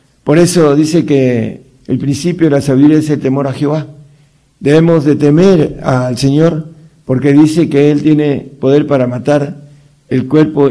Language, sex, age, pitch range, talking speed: Italian, male, 60-79, 135-165 Hz, 165 wpm